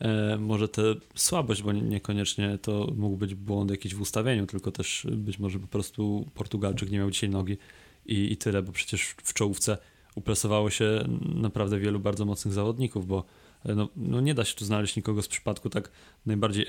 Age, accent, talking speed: 20-39, native, 170 wpm